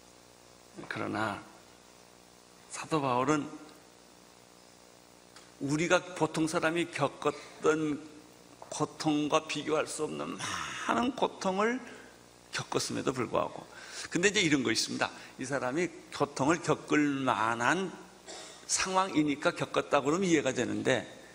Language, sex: Korean, male